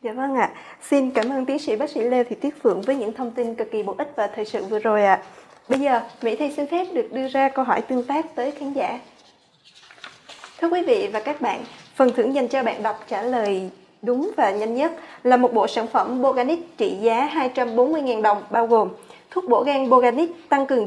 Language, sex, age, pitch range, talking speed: Vietnamese, female, 20-39, 240-285 Hz, 235 wpm